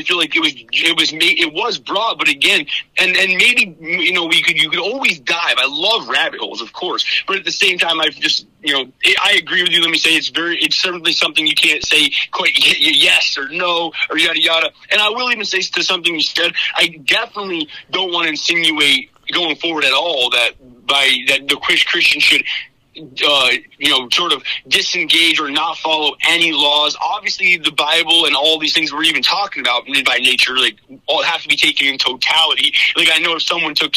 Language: English